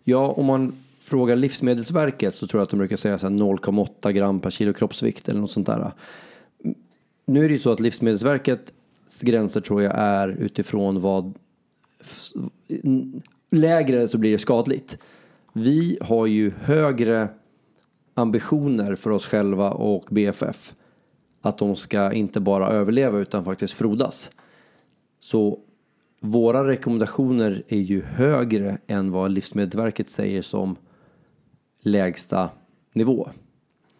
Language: Swedish